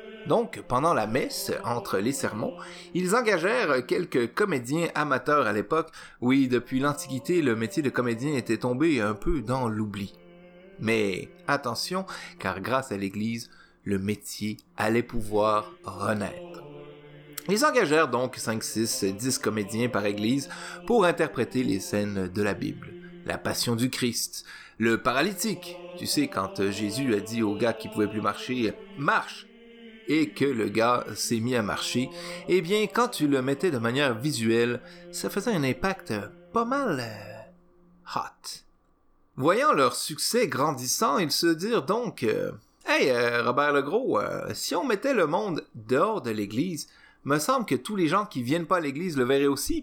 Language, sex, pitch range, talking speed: French, male, 110-175 Hz, 160 wpm